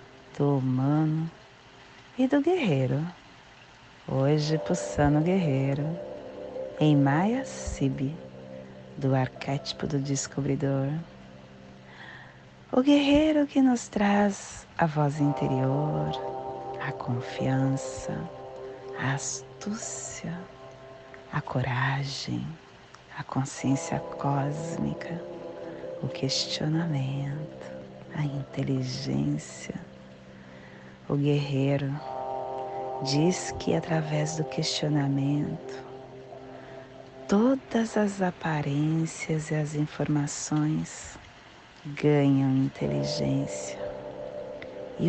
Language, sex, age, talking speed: Portuguese, female, 40-59, 70 wpm